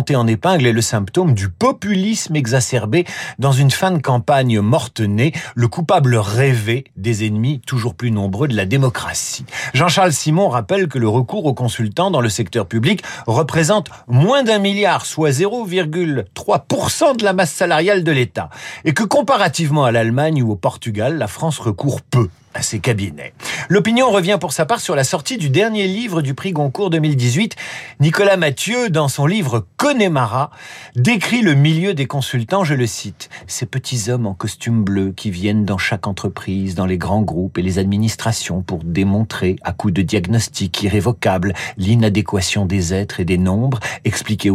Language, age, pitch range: French, 50-69, 105-160 Hz